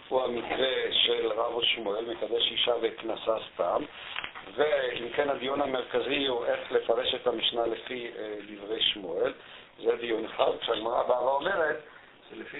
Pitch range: 125-200 Hz